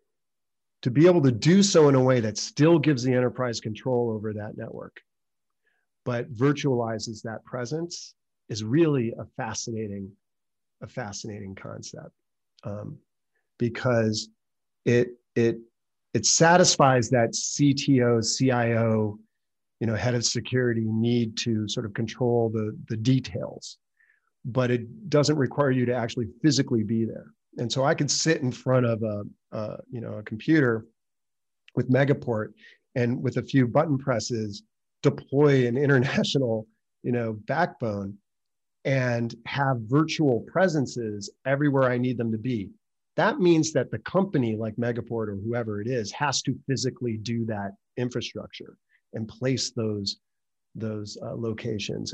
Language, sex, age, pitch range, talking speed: English, male, 40-59, 110-135 Hz, 140 wpm